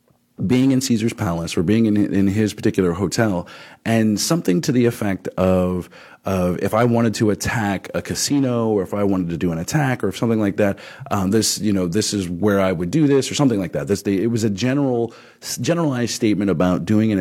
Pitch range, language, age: 95-120 Hz, English, 30-49